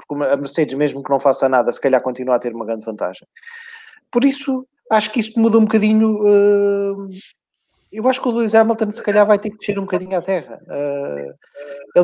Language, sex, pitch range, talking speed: English, male, 145-210 Hz, 205 wpm